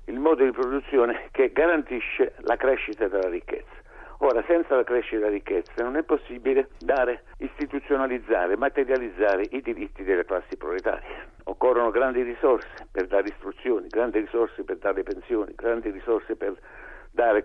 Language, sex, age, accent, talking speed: Italian, male, 60-79, native, 145 wpm